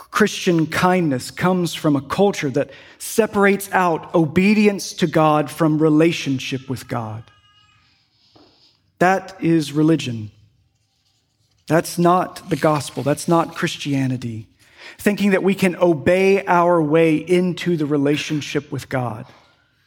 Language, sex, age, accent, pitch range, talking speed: English, male, 40-59, American, 130-180 Hz, 115 wpm